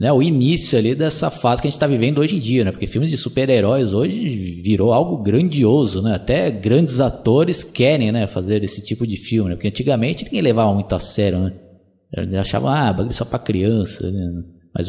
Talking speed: 205 wpm